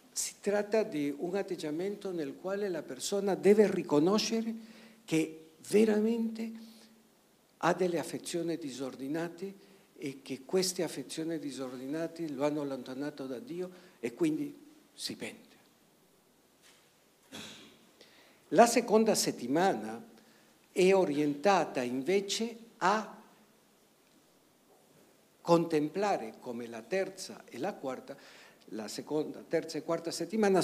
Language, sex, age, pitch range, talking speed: Italian, male, 60-79, 155-215 Hz, 100 wpm